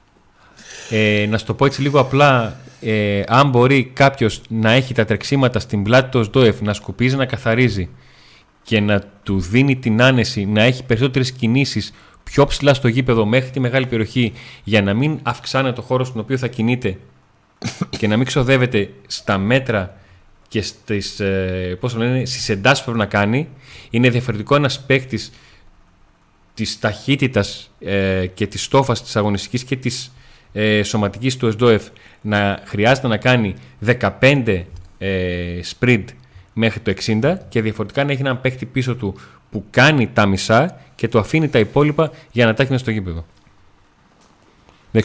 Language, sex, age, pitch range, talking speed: Greek, male, 30-49, 105-130 Hz, 150 wpm